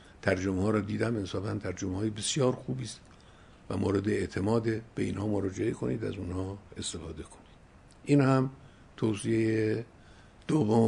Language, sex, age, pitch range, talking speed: English, male, 50-69, 95-130 Hz, 125 wpm